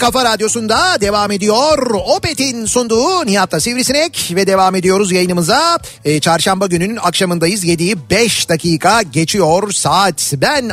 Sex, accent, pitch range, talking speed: male, native, 165-255 Hz, 125 wpm